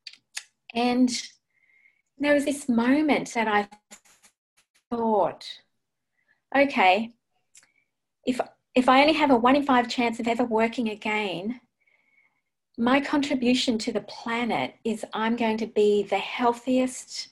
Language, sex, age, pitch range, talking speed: English, female, 40-59, 215-250 Hz, 120 wpm